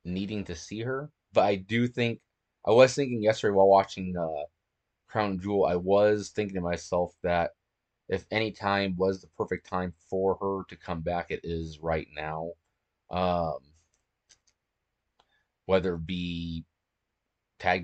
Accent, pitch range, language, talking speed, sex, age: American, 80-95 Hz, English, 150 wpm, male, 30-49